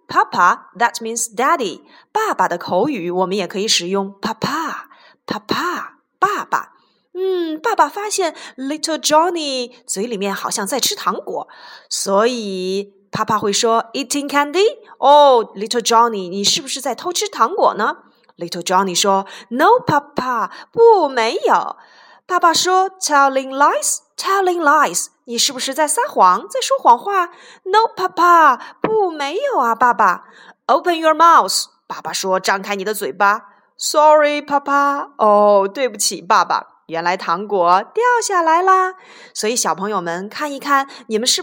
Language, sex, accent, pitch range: Chinese, female, native, 225-360 Hz